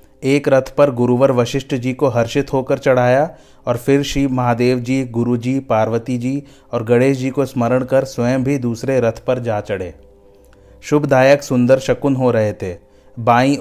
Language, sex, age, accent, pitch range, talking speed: Hindi, male, 30-49, native, 120-135 Hz, 170 wpm